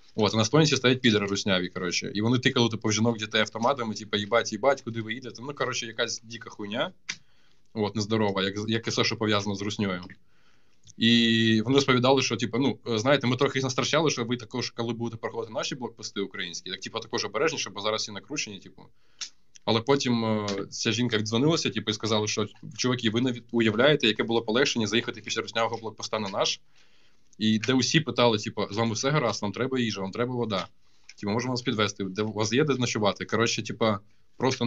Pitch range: 105-120 Hz